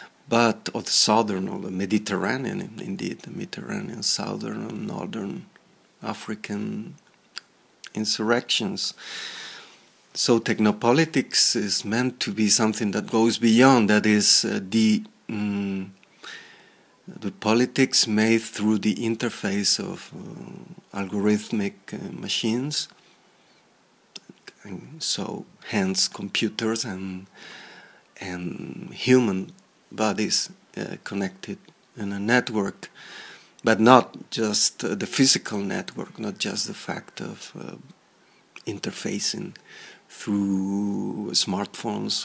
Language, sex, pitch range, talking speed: English, male, 105-130 Hz, 100 wpm